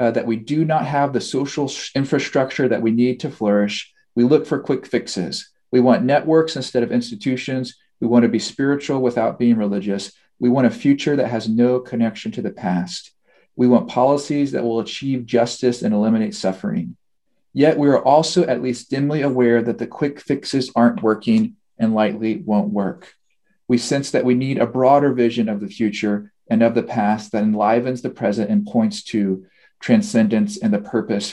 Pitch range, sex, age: 110-145 Hz, male, 40-59